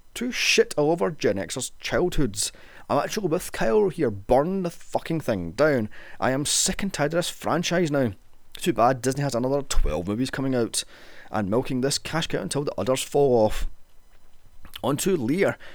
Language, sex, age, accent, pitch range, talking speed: English, male, 30-49, British, 110-165 Hz, 185 wpm